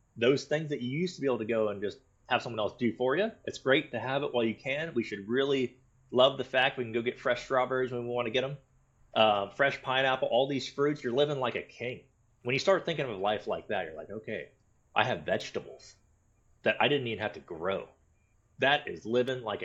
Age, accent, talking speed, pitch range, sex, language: 30-49, American, 245 wpm, 115-135 Hz, male, English